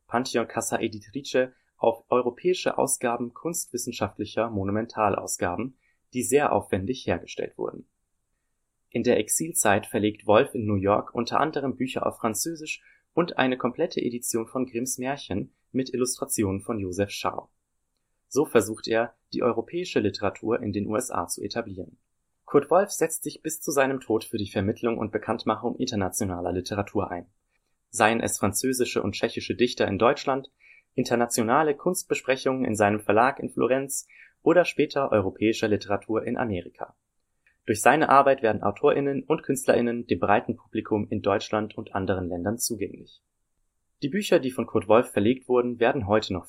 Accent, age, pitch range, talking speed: German, 30-49, 105-130 Hz, 145 wpm